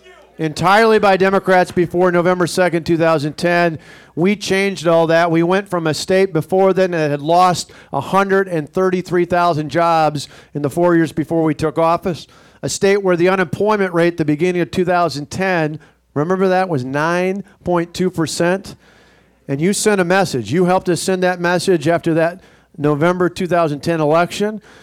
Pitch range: 170-210 Hz